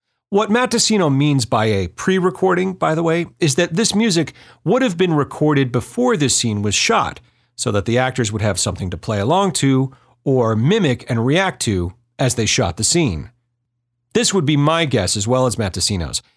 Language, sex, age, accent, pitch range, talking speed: English, male, 40-59, American, 110-165 Hz, 190 wpm